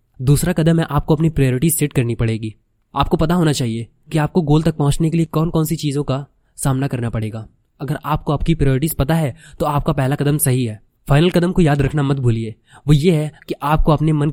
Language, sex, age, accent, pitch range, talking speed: Hindi, male, 20-39, native, 130-160 Hz, 225 wpm